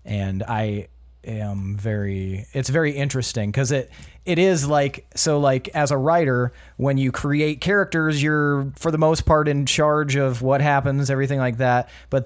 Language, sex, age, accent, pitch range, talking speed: English, male, 30-49, American, 115-145 Hz, 170 wpm